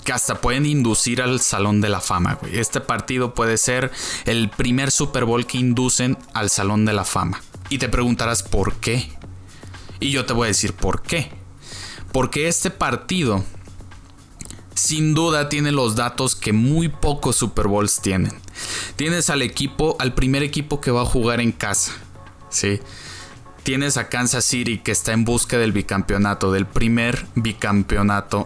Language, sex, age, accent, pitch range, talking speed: Spanish, male, 20-39, Mexican, 100-135 Hz, 160 wpm